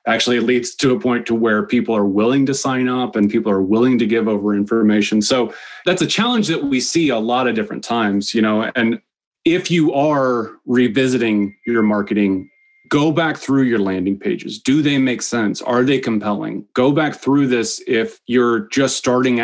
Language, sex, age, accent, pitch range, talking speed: English, male, 30-49, American, 105-130 Hz, 200 wpm